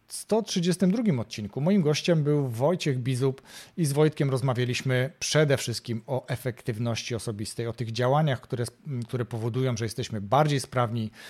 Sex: male